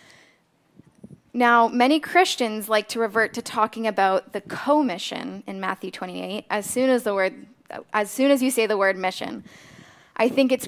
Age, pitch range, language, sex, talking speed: 10-29, 195-245 Hz, English, female, 150 wpm